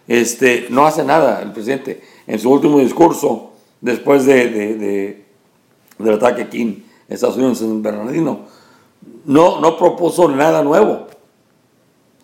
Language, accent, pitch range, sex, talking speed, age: English, Mexican, 120-150 Hz, male, 135 wpm, 60-79